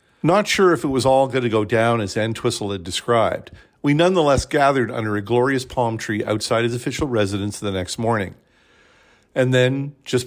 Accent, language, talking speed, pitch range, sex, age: American, English, 200 wpm, 110-135 Hz, male, 50-69